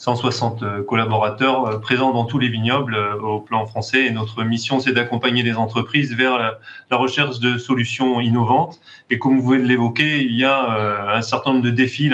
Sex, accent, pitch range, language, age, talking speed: male, French, 115-135 Hz, French, 30-49, 195 wpm